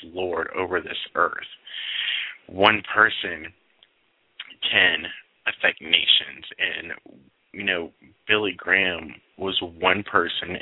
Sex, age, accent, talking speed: male, 30-49, American, 95 wpm